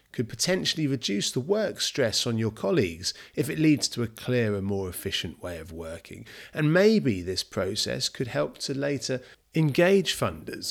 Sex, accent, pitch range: male, British, 100-140 Hz